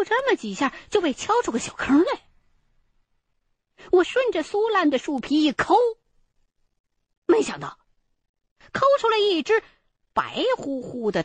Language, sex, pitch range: Chinese, female, 245-380 Hz